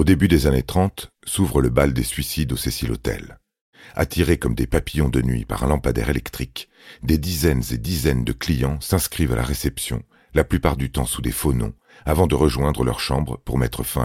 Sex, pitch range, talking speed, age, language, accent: male, 65-80 Hz, 210 wpm, 40-59, French, French